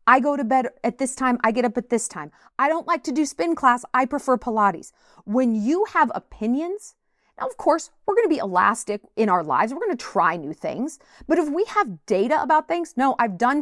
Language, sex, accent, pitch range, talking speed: English, female, American, 215-310 Hz, 230 wpm